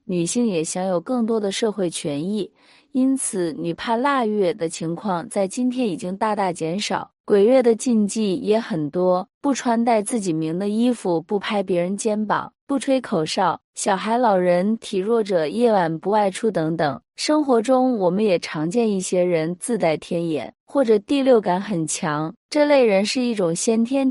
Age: 20-39